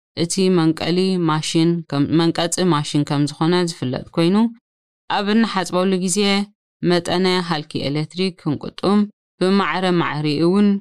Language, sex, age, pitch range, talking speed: Amharic, female, 20-39, 155-185 Hz, 80 wpm